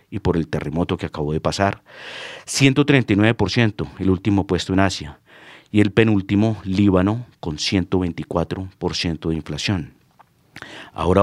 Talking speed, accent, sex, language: 125 wpm, Colombian, male, Spanish